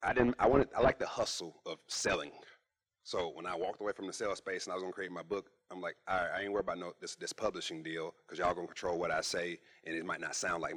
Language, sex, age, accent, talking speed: English, male, 30-49, American, 290 wpm